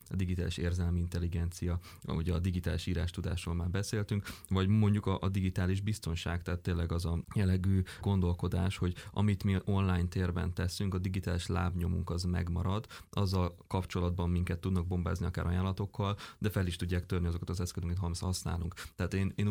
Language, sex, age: Hungarian, male, 20-39